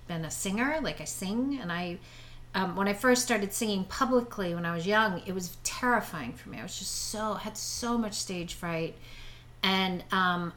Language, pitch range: English, 170-215 Hz